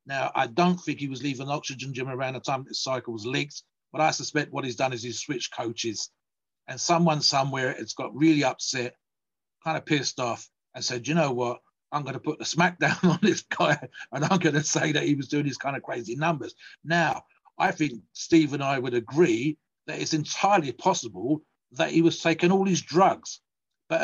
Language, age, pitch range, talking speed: English, 50-69, 130-165 Hz, 215 wpm